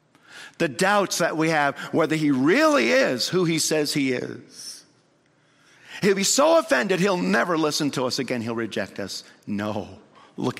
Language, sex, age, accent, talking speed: English, male, 50-69, American, 165 wpm